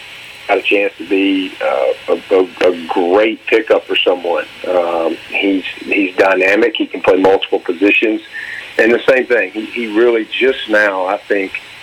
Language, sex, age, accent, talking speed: English, male, 40-59, American, 160 wpm